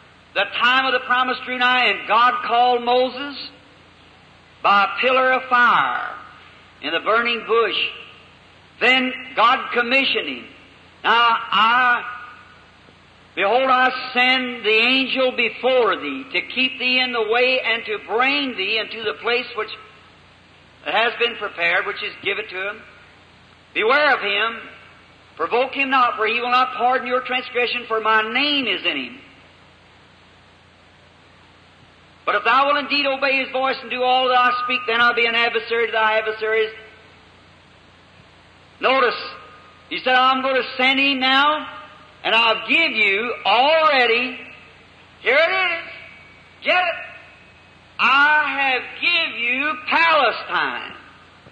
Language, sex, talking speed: English, male, 140 wpm